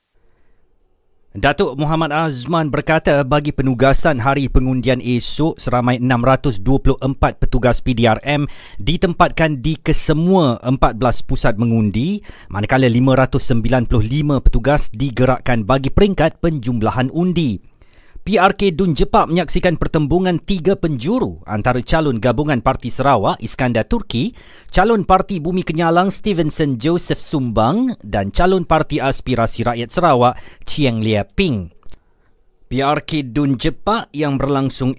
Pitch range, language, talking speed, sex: 125-170 Hz, Malay, 105 wpm, male